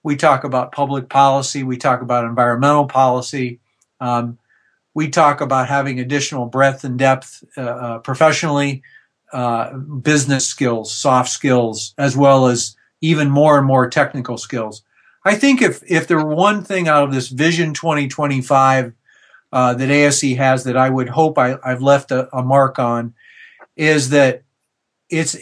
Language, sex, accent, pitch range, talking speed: English, male, American, 130-155 Hz, 155 wpm